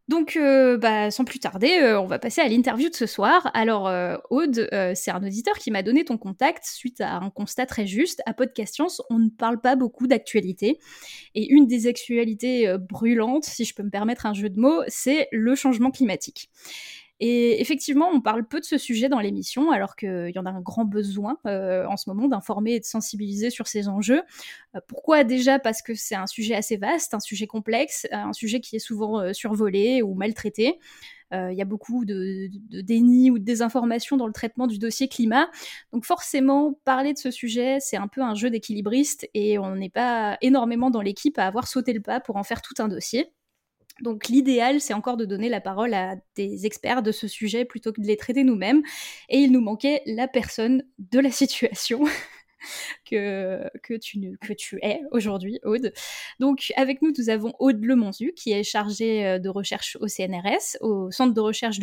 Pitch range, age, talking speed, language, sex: 210-260 Hz, 10-29, 205 wpm, French, female